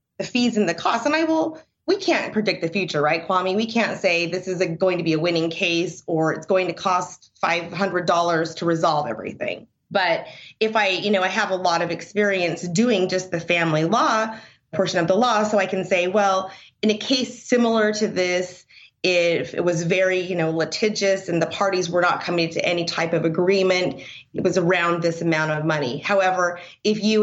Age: 30-49